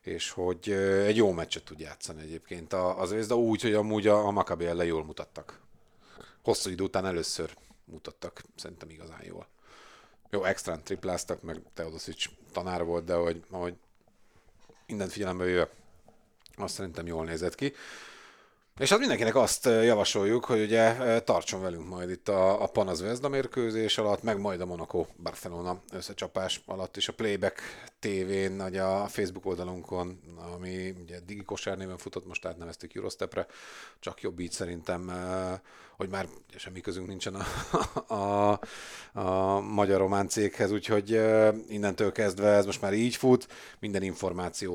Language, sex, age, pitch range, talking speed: Hungarian, male, 40-59, 90-100 Hz, 150 wpm